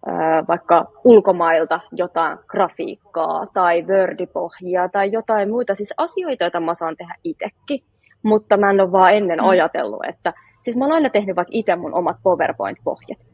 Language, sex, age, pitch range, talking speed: Finnish, female, 20-39, 170-225 Hz, 155 wpm